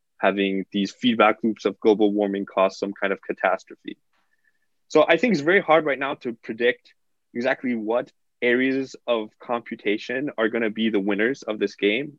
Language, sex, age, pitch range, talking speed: English, male, 20-39, 110-145 Hz, 170 wpm